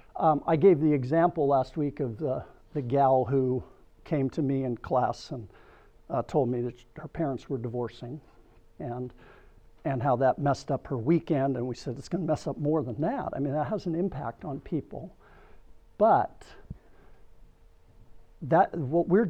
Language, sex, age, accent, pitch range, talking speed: English, male, 60-79, American, 135-165 Hz, 175 wpm